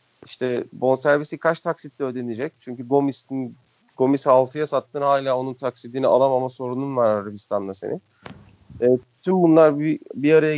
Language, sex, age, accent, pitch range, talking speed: Turkish, male, 40-59, native, 125-150 Hz, 140 wpm